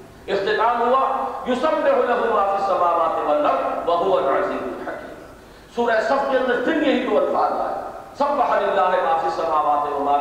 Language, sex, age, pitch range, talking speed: English, male, 50-69, 160-255 Hz, 140 wpm